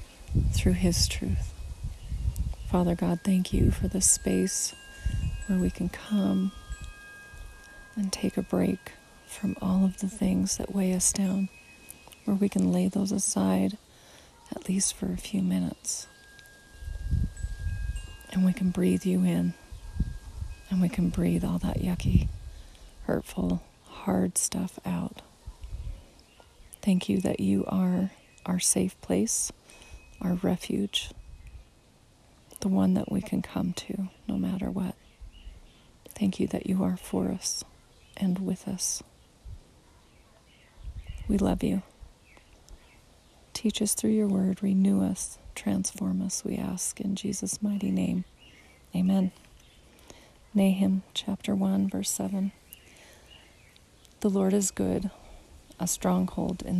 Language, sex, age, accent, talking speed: English, female, 30-49, American, 125 wpm